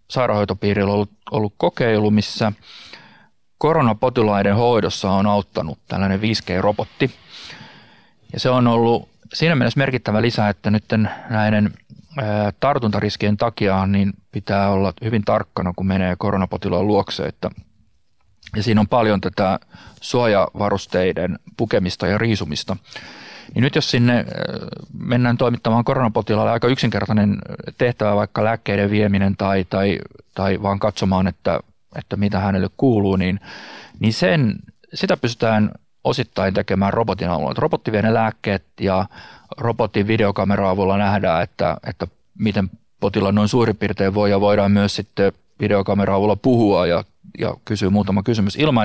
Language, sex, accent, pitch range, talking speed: Finnish, male, native, 100-115 Hz, 130 wpm